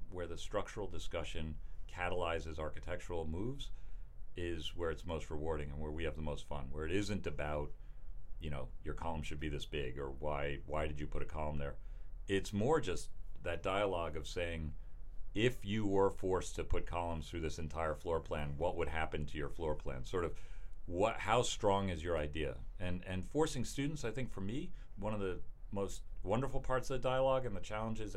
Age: 40-59